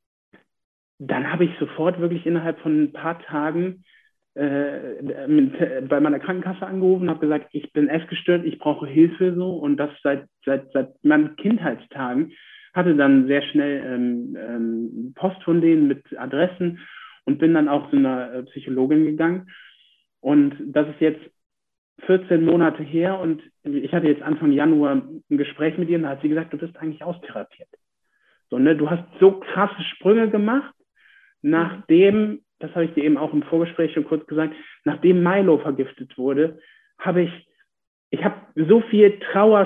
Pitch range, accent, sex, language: 155-205 Hz, German, male, German